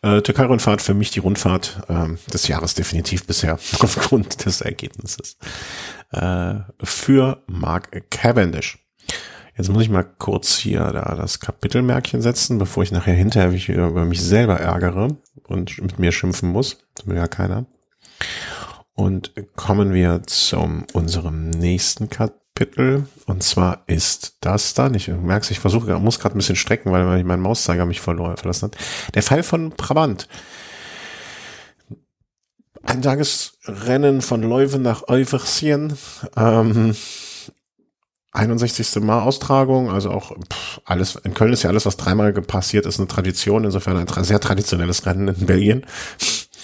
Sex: male